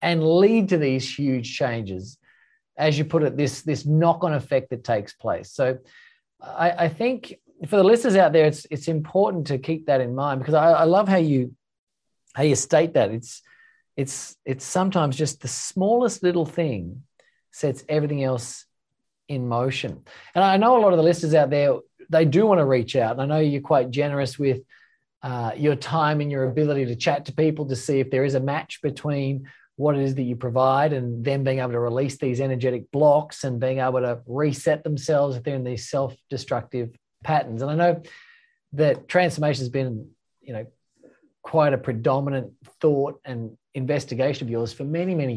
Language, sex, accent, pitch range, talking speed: English, male, Australian, 130-165 Hz, 195 wpm